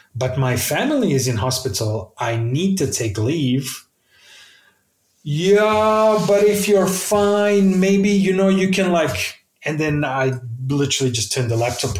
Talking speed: 150 wpm